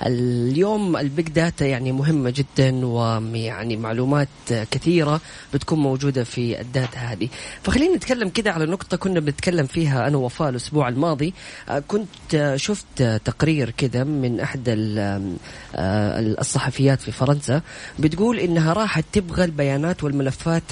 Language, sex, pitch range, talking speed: Arabic, female, 130-175 Hz, 120 wpm